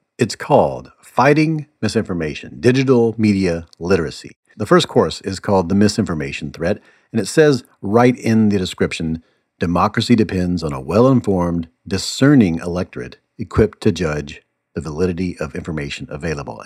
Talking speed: 135 wpm